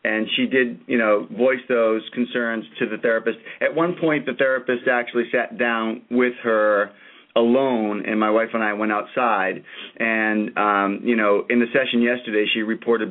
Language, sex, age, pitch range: English, male, 40-59, 110-125 Hz